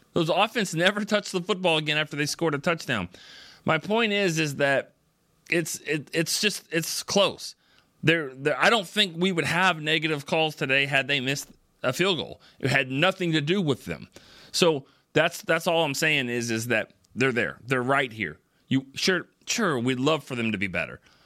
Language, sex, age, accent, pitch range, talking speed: English, male, 30-49, American, 125-170 Hz, 200 wpm